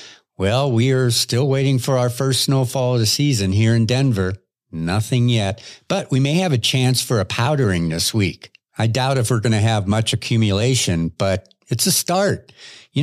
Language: English